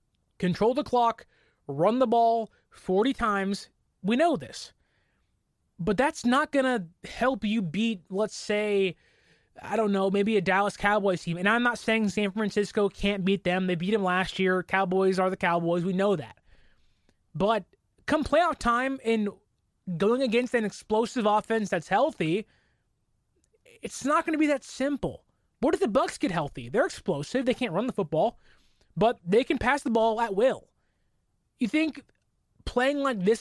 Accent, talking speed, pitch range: American, 170 wpm, 195-245 Hz